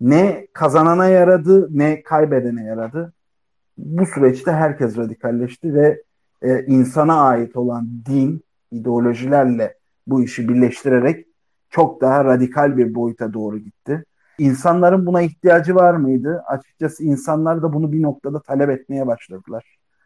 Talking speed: 125 wpm